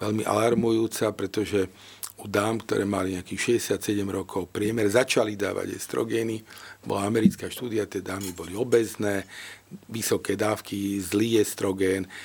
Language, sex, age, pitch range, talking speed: Slovak, male, 50-69, 95-110 Hz, 120 wpm